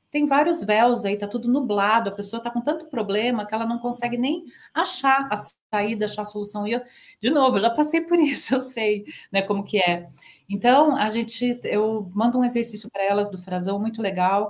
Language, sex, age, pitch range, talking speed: Portuguese, female, 40-59, 195-240 Hz, 215 wpm